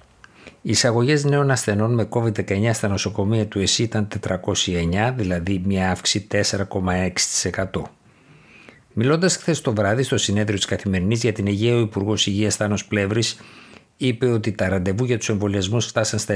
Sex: male